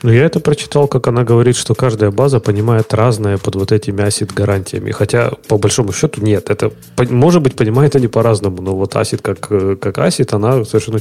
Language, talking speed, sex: Russian, 195 wpm, male